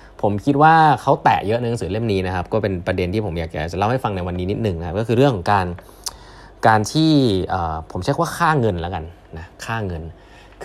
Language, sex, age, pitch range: Thai, male, 20-39, 90-120 Hz